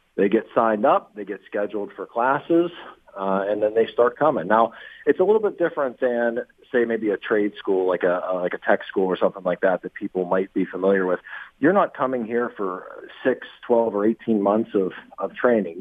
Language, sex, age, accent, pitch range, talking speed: English, male, 40-59, American, 105-130 Hz, 215 wpm